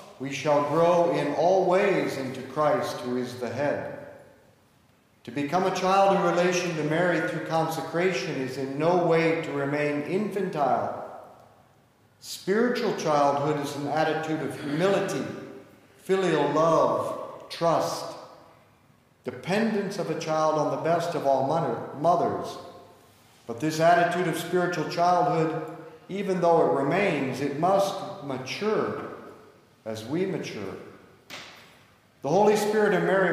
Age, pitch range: 50-69, 140-180 Hz